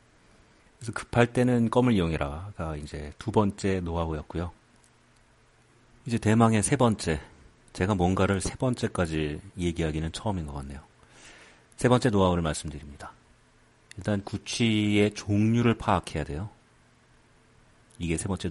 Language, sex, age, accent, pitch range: Korean, male, 40-59, native, 80-115 Hz